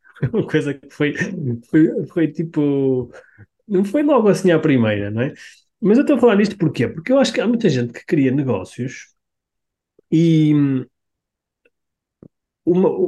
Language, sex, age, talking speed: Portuguese, male, 20-39, 155 wpm